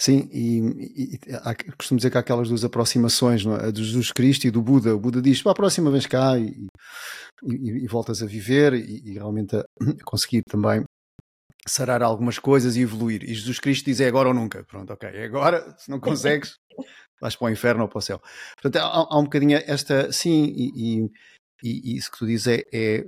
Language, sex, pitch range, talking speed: Portuguese, male, 120-145 Hz, 210 wpm